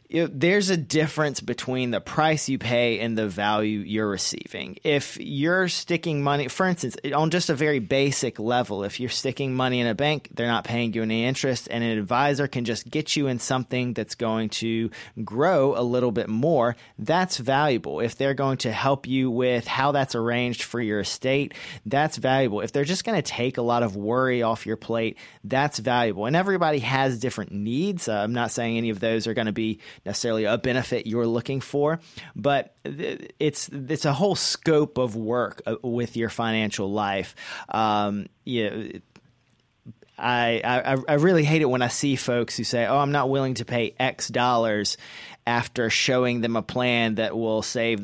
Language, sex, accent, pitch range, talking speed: English, male, American, 110-140 Hz, 190 wpm